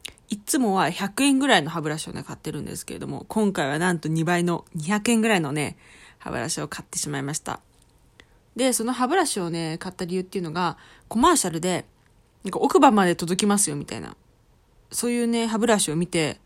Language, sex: Japanese, female